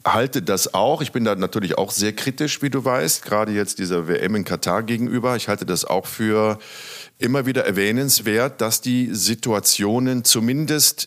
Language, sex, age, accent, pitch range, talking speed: German, male, 50-69, German, 90-120 Hz, 180 wpm